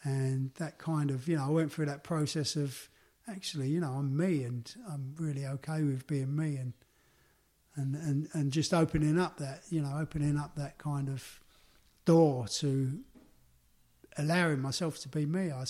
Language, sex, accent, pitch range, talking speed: English, male, British, 135-160 Hz, 180 wpm